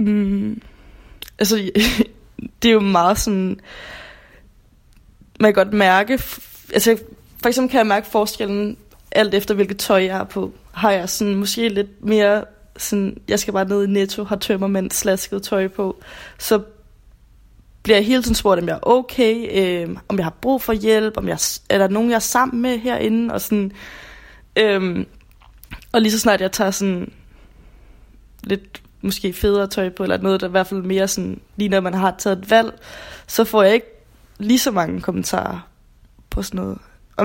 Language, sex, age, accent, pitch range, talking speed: Danish, female, 20-39, native, 190-220 Hz, 180 wpm